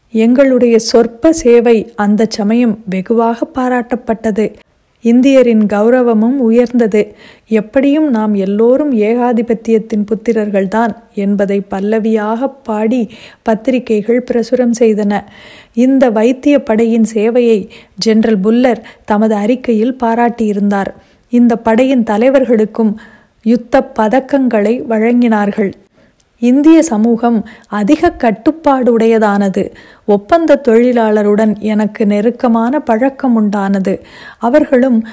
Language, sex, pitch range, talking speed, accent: Tamil, female, 210-245 Hz, 80 wpm, native